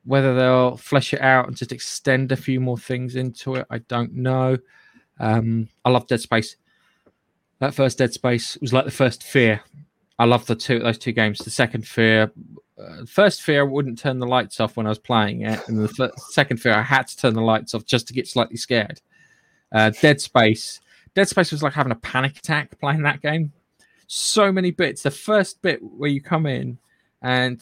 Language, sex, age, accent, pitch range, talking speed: English, male, 20-39, British, 120-150 Hz, 210 wpm